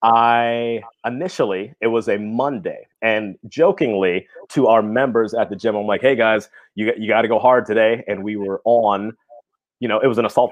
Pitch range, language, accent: 95-115 Hz, English, American